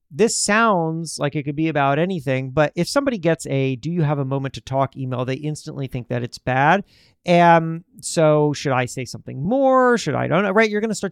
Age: 40-59